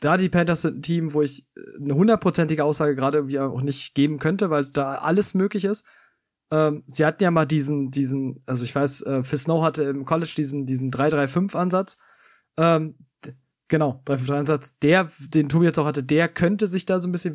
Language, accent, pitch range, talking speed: German, German, 145-175 Hz, 200 wpm